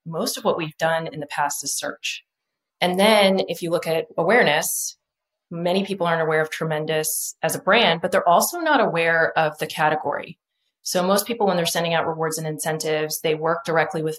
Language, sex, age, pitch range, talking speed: English, female, 30-49, 155-180 Hz, 205 wpm